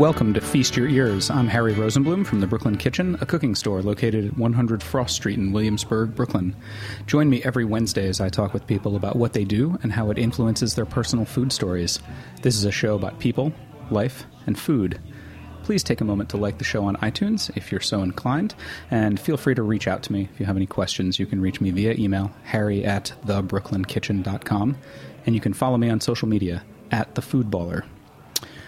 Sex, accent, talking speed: male, American, 205 wpm